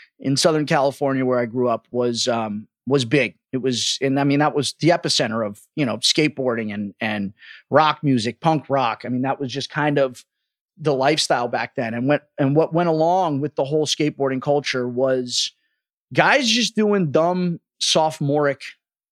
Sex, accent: male, American